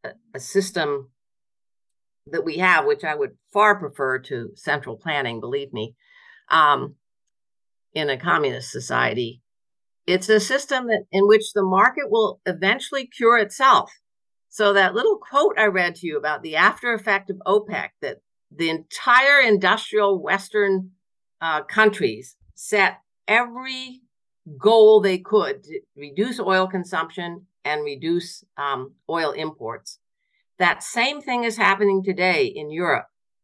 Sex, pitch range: female, 170-230 Hz